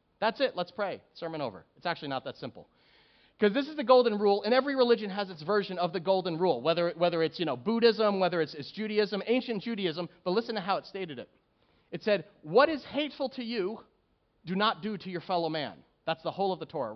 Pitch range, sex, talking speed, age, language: 170-230 Hz, male, 235 wpm, 30-49, English